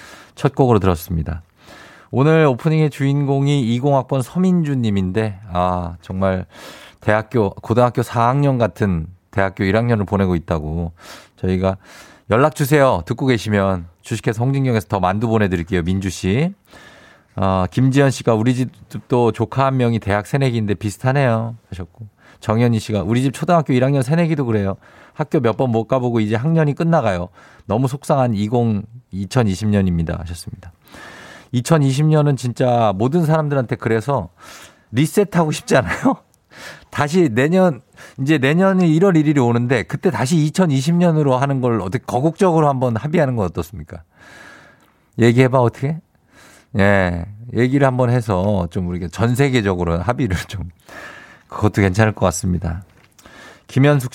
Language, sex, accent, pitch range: Korean, male, native, 100-140 Hz